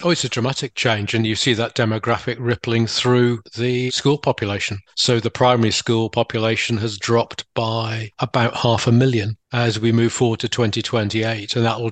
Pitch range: 115-130 Hz